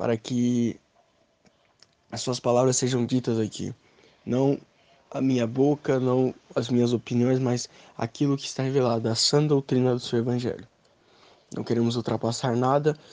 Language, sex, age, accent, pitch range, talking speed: Portuguese, male, 20-39, Brazilian, 120-145 Hz, 140 wpm